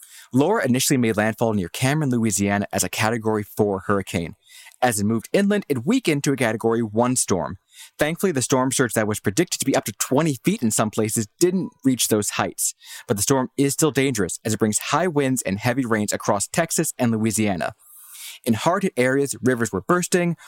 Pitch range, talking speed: 110-145 Hz, 195 wpm